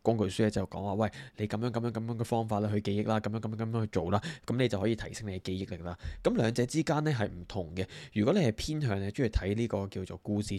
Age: 20-39